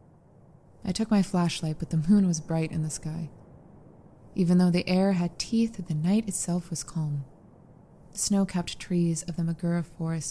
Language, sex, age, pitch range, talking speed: English, female, 20-39, 165-190 Hz, 175 wpm